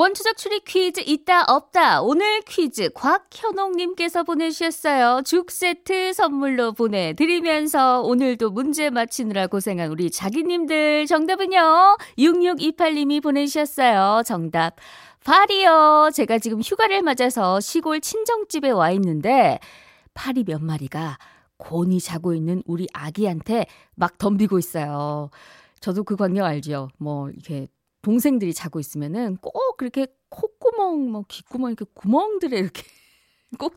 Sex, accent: female, native